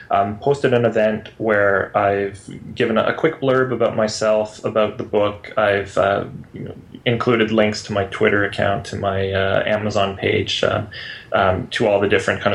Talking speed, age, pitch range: 170 wpm, 20-39, 100-115 Hz